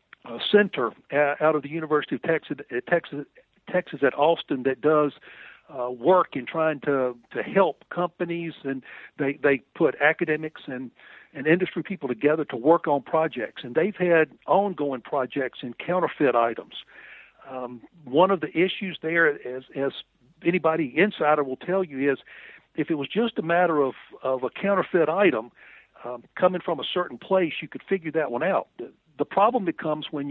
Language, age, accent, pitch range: English, 60-79, American, 140-180 Hz